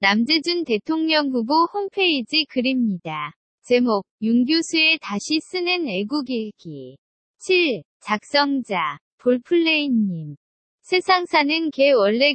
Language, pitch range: Korean, 230-315 Hz